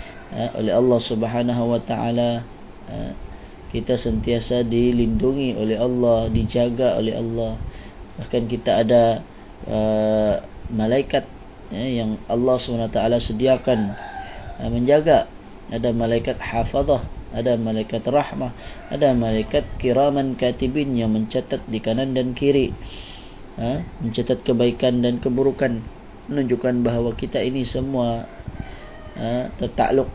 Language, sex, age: Malay, male, 20-39